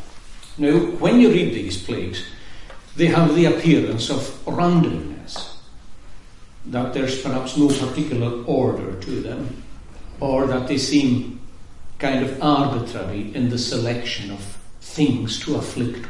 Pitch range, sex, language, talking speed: 105-135 Hz, male, English, 125 wpm